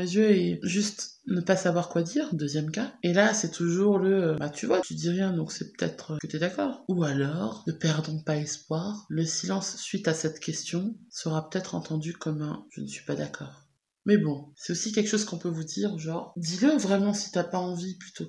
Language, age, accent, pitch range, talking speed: French, 20-39, French, 155-195 Hz, 240 wpm